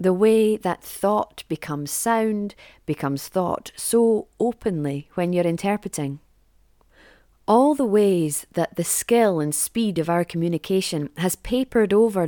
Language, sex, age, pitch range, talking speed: English, female, 30-49, 155-205 Hz, 130 wpm